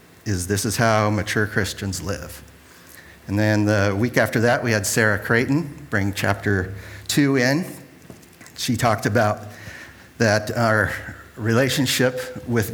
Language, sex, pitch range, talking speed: English, male, 100-120 Hz, 130 wpm